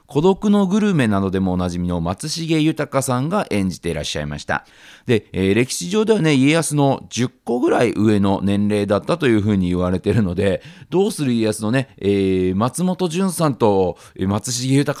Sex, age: male, 40-59